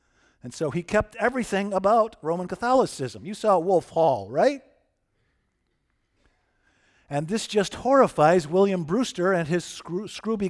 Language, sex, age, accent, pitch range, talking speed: English, male, 50-69, American, 155-215 Hz, 125 wpm